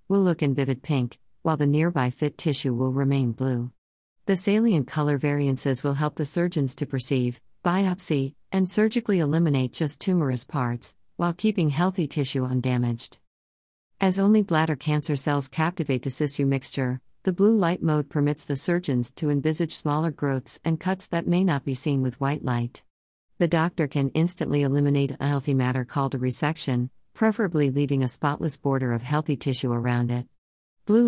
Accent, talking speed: American, 165 wpm